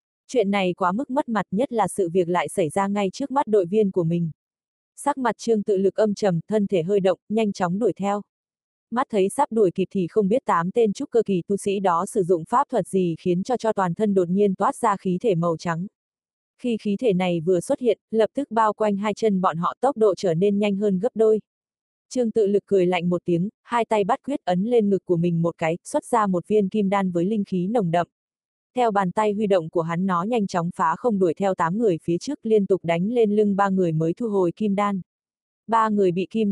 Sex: female